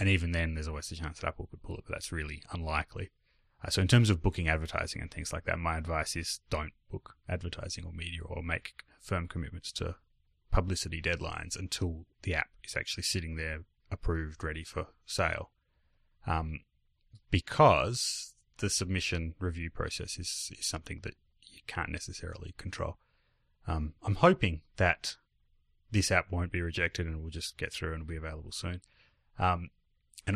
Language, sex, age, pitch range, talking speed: English, male, 30-49, 80-100 Hz, 175 wpm